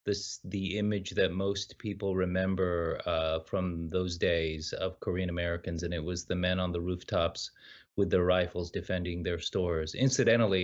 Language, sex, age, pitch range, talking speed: English, male, 30-49, 90-110 Hz, 165 wpm